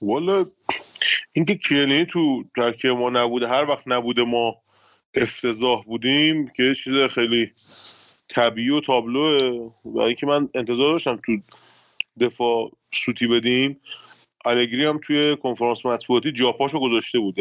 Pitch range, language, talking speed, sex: 120-150 Hz, Persian, 125 wpm, male